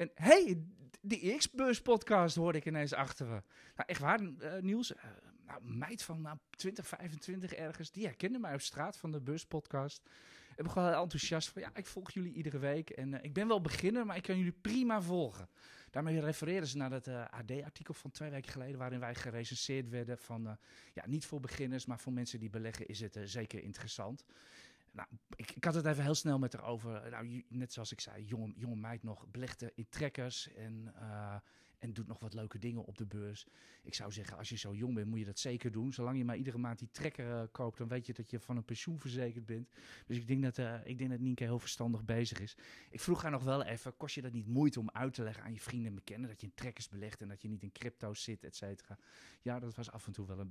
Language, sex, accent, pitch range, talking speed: Dutch, male, Dutch, 115-155 Hz, 240 wpm